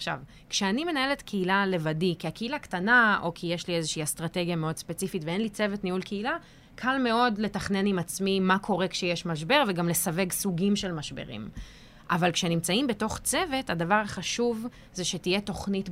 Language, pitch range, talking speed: Hebrew, 175-210 Hz, 165 wpm